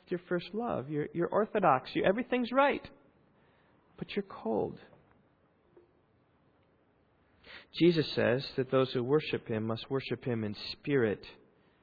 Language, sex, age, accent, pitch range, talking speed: English, male, 40-59, American, 130-200 Hz, 120 wpm